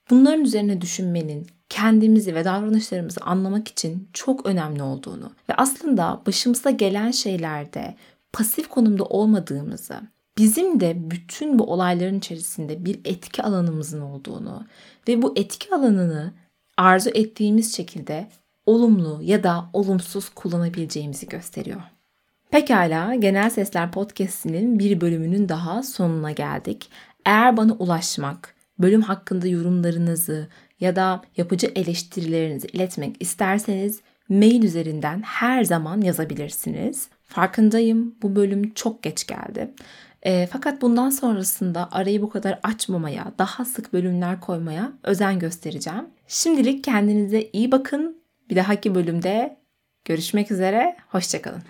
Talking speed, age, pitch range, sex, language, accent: 115 wpm, 30-49, 175-225 Hz, female, Turkish, native